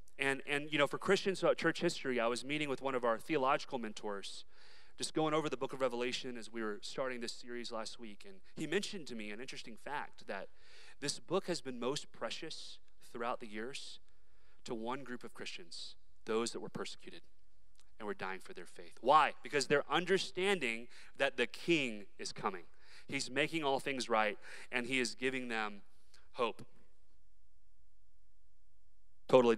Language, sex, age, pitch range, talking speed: English, male, 30-49, 115-160 Hz, 175 wpm